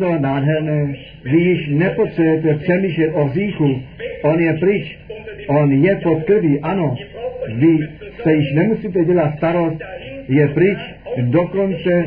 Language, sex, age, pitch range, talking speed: Czech, male, 60-79, 150-190 Hz, 110 wpm